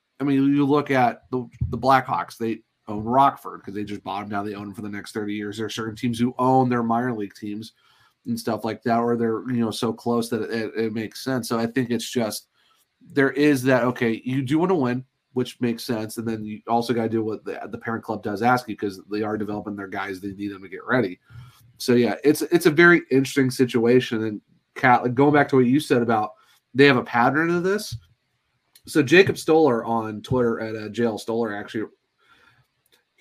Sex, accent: male, American